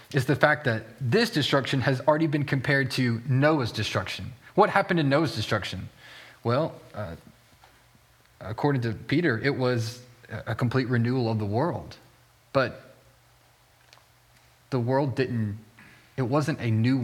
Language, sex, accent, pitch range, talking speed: English, male, American, 120-150 Hz, 135 wpm